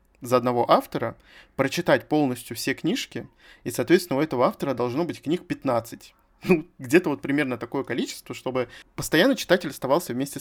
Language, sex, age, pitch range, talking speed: Russian, male, 20-39, 125-160 Hz, 155 wpm